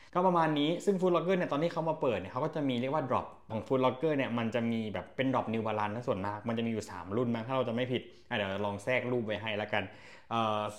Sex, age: male, 20-39